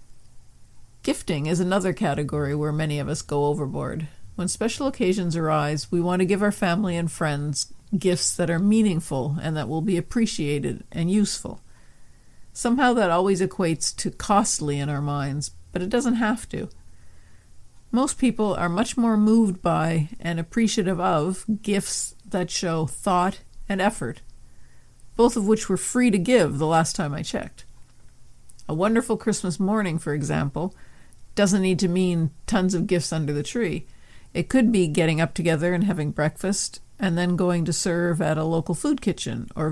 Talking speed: 170 wpm